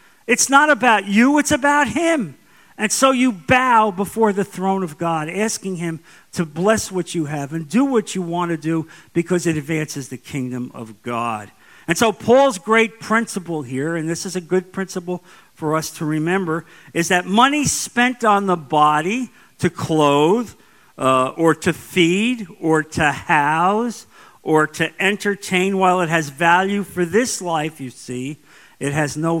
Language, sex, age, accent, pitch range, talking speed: English, male, 50-69, American, 145-200 Hz, 170 wpm